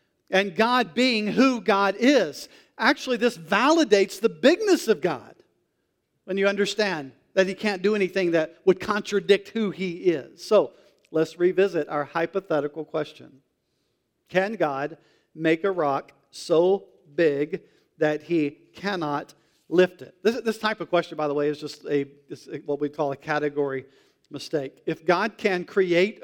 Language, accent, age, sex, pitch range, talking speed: English, American, 50-69, male, 165-205 Hz, 155 wpm